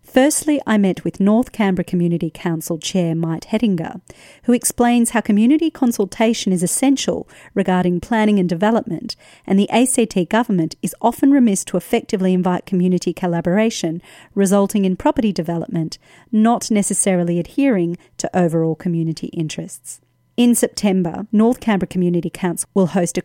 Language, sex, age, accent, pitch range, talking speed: English, female, 40-59, Australian, 170-210 Hz, 140 wpm